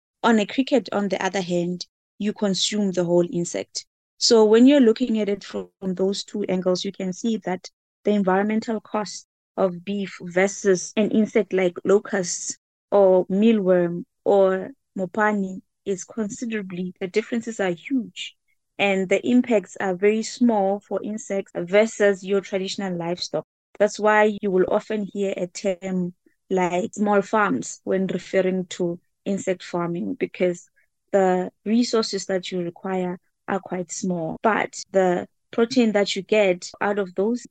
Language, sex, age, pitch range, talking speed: English, female, 20-39, 185-215 Hz, 150 wpm